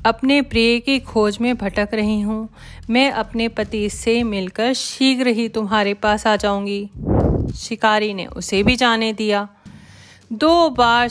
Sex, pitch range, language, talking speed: female, 195-235 Hz, Hindi, 145 wpm